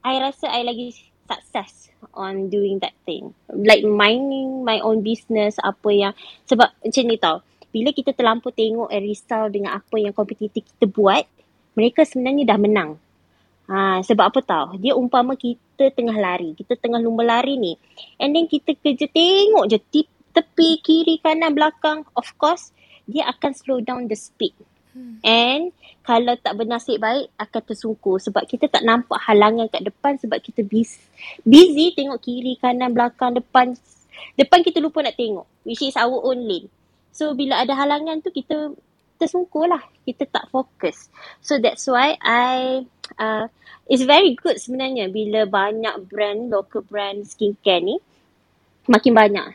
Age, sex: 20-39, female